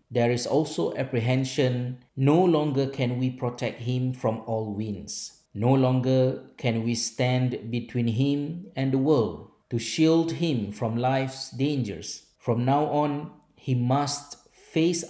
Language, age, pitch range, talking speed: Malay, 50-69, 110-140 Hz, 140 wpm